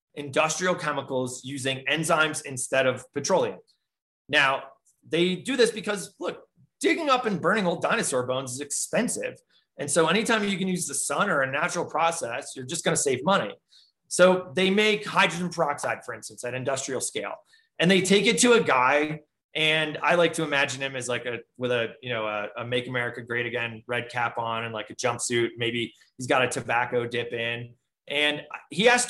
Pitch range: 135-195 Hz